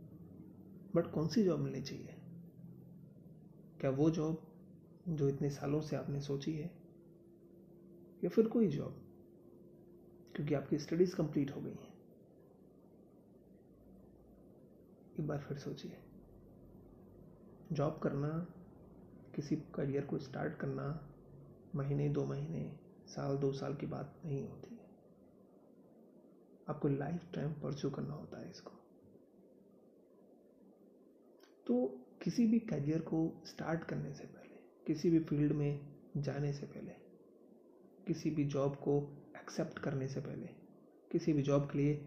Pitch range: 145-175 Hz